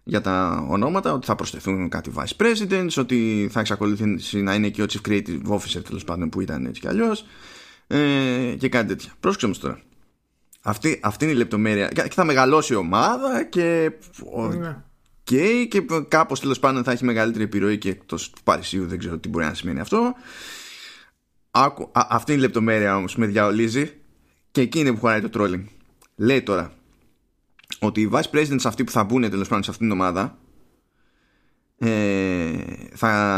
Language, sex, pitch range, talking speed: Greek, male, 105-140 Hz, 165 wpm